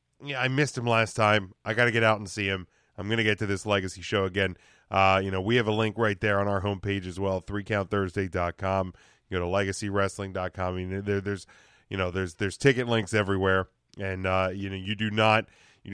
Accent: American